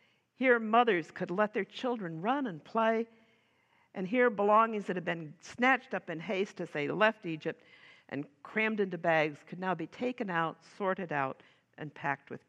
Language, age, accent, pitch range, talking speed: English, 60-79, American, 170-230 Hz, 180 wpm